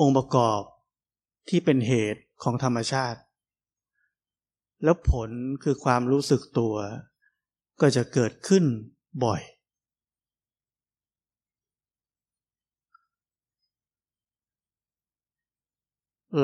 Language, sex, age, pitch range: Thai, male, 60-79, 115-140 Hz